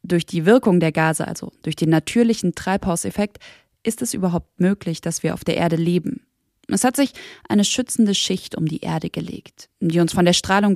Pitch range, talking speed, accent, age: 175-210 Hz, 195 wpm, German, 20-39